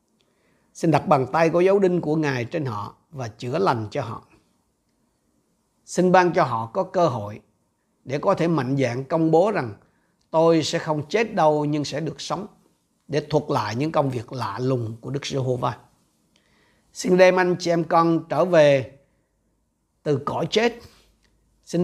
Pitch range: 130-175 Hz